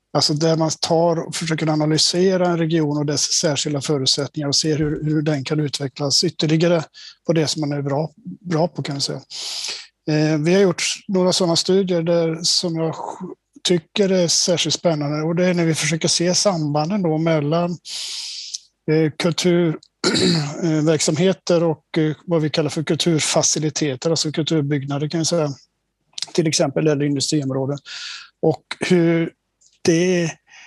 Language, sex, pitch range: English, male, 150-175 Hz